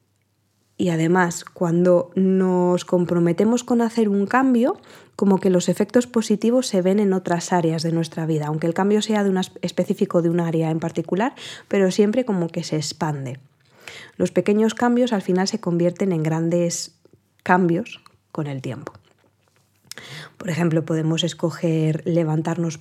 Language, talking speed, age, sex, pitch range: Spanish, 145 wpm, 20-39, female, 160-195 Hz